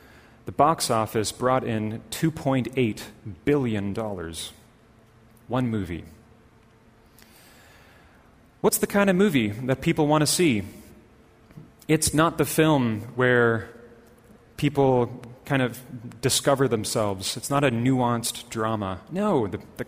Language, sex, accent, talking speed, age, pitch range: English, male, American, 115 wpm, 30-49, 105-135 Hz